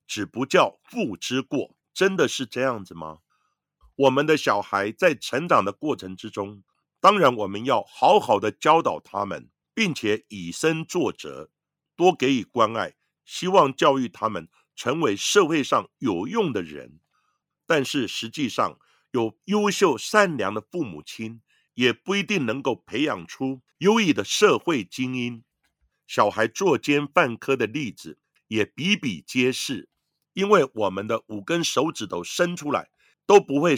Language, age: Chinese, 50-69